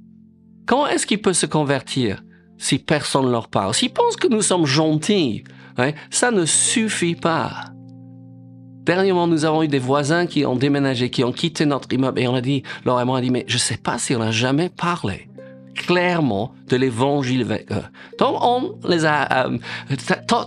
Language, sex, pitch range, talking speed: French, male, 130-180 Hz, 185 wpm